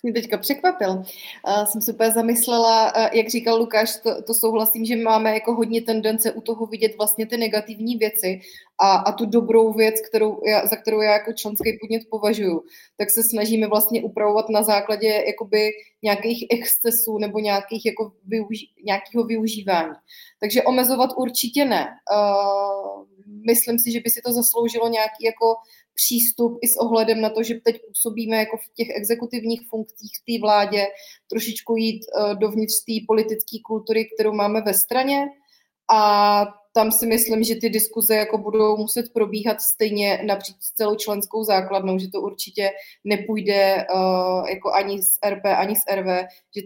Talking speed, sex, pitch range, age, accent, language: 165 wpm, female, 200-225 Hz, 20-39, native, Czech